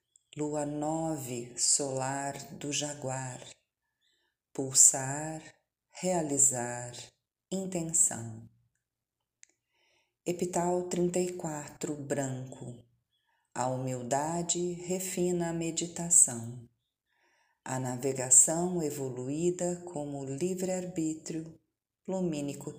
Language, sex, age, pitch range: Portuguese, female, 40-59, 130-180 Hz